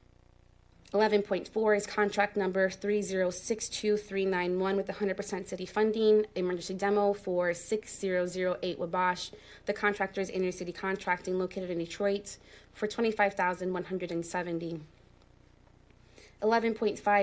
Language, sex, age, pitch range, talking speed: English, female, 20-39, 180-205 Hz, 85 wpm